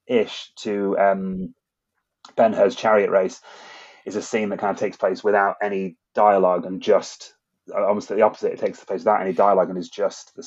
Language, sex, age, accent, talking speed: English, male, 30-49, British, 190 wpm